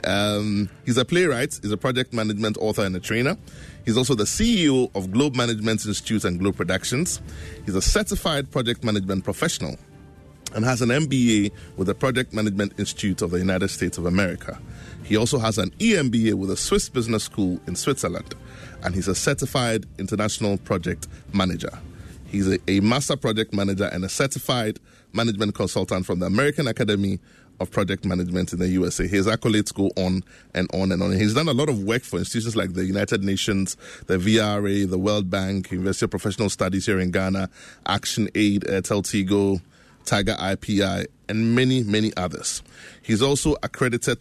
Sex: male